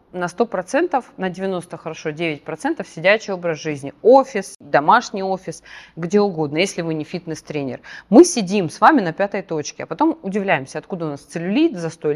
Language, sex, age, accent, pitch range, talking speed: Russian, female, 30-49, native, 160-220 Hz, 175 wpm